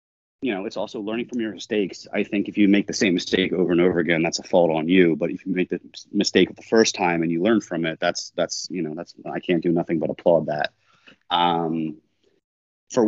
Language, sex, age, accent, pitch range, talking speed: English, male, 30-49, American, 85-100 Hz, 245 wpm